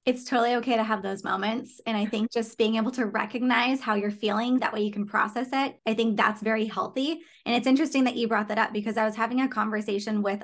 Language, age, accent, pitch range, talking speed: English, 20-39, American, 210-245 Hz, 255 wpm